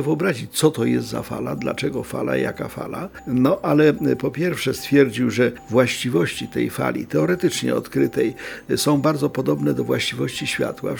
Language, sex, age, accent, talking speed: Polish, male, 50-69, native, 155 wpm